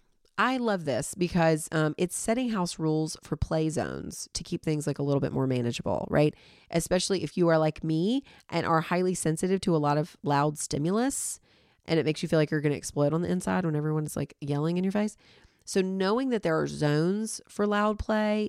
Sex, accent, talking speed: female, American, 215 wpm